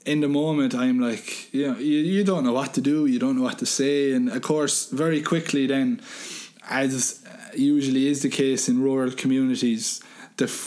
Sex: male